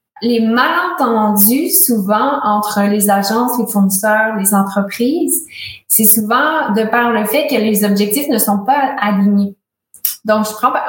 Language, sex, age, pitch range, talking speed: French, female, 20-39, 205-245 Hz, 145 wpm